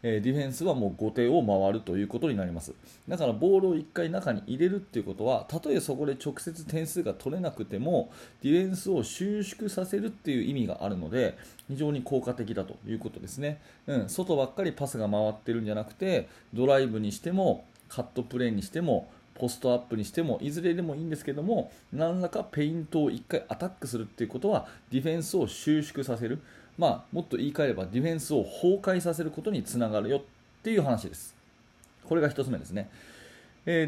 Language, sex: Japanese, male